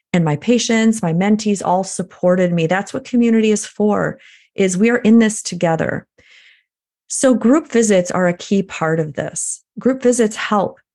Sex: female